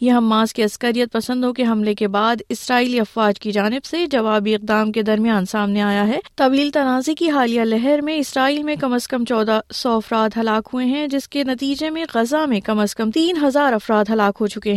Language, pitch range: Urdu, 220-265 Hz